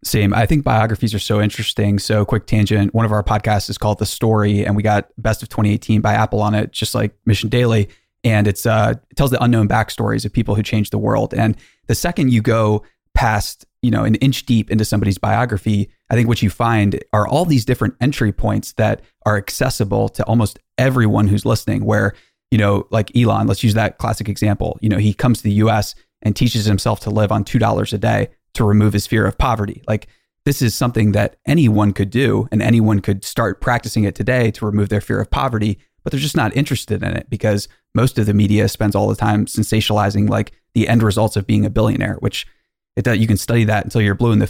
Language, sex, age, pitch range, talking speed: English, male, 20-39, 105-115 Hz, 225 wpm